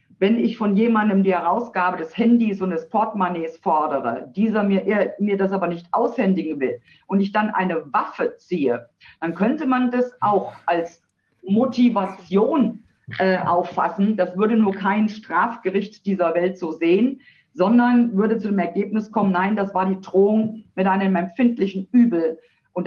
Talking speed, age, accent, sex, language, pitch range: 155 wpm, 50-69, German, female, German, 180-215 Hz